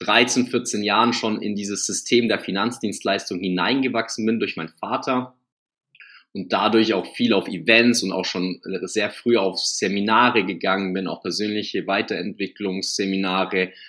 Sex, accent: male, German